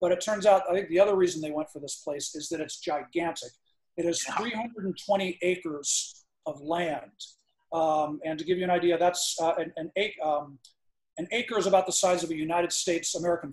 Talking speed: 215 wpm